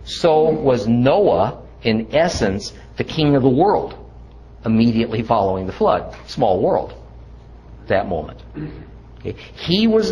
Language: English